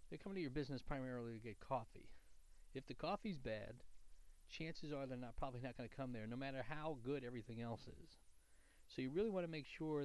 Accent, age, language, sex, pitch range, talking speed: American, 40-59, English, male, 110-145 Hz, 220 wpm